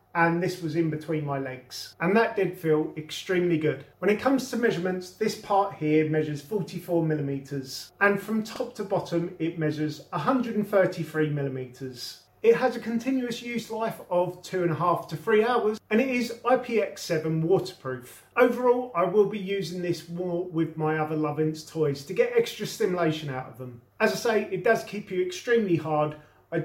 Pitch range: 155-230 Hz